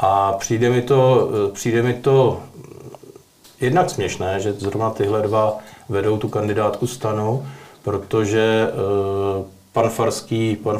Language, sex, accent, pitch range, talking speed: Czech, male, native, 100-110 Hz, 115 wpm